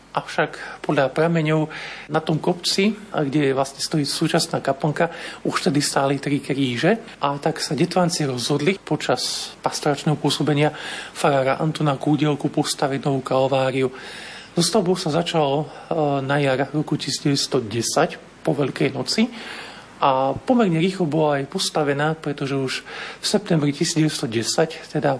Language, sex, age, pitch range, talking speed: Slovak, male, 50-69, 135-155 Hz, 125 wpm